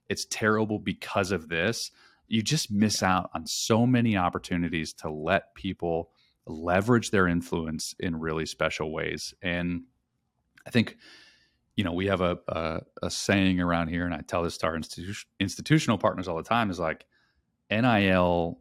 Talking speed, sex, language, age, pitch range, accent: 165 wpm, male, English, 30-49, 85-105 Hz, American